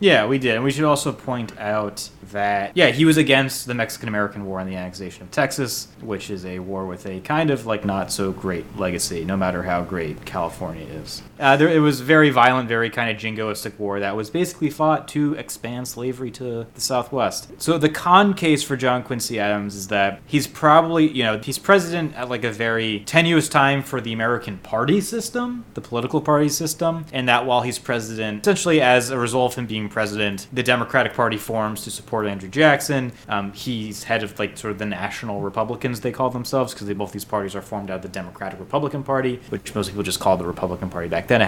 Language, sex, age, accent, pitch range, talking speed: English, male, 30-49, American, 105-135 Hz, 215 wpm